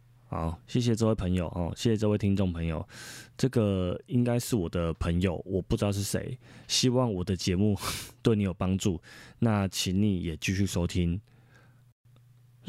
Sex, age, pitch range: male, 20-39, 90-120 Hz